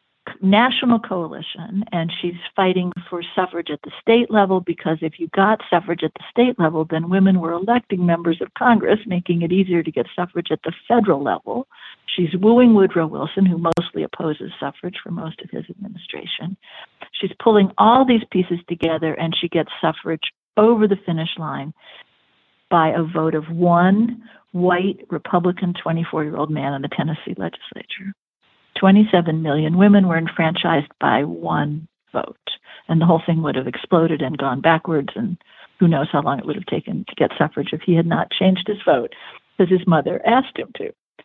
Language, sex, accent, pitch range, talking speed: English, female, American, 165-210 Hz, 175 wpm